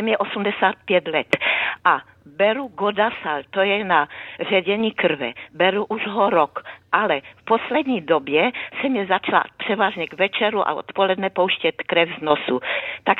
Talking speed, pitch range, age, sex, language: 145 wpm, 145-200 Hz, 50-69, female, Czech